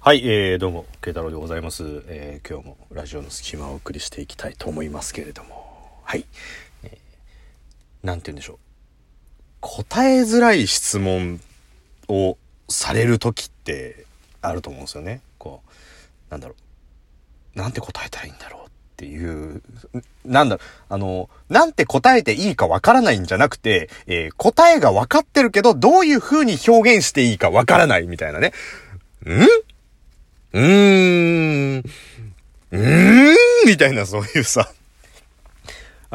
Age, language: 40-59, Japanese